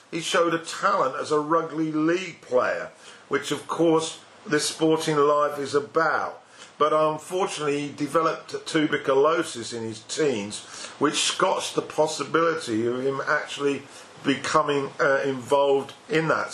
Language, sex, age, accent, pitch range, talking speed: English, male, 50-69, British, 135-155 Hz, 135 wpm